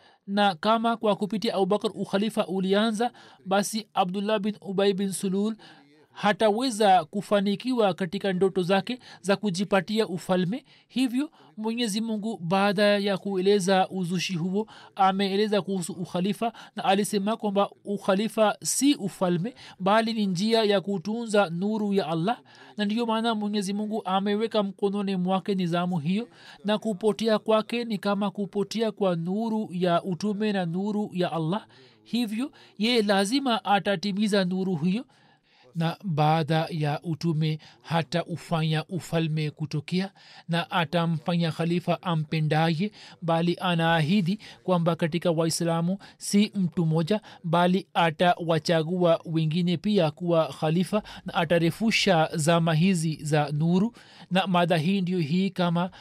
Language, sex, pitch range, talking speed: Swahili, male, 175-210 Hz, 120 wpm